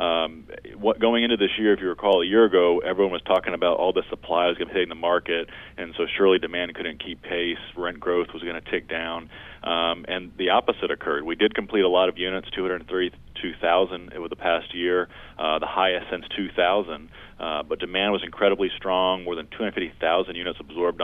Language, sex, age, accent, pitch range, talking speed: English, male, 30-49, American, 85-90 Hz, 205 wpm